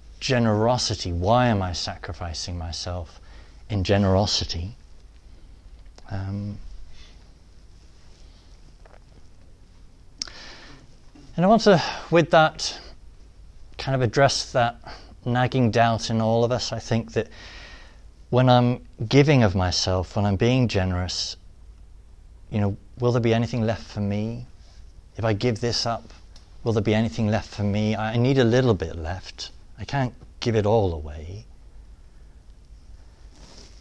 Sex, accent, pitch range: male, British, 85-120 Hz